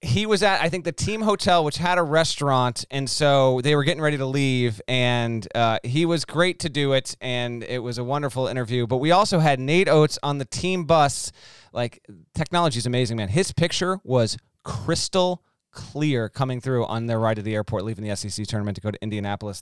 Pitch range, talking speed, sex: 115-165 Hz, 215 wpm, male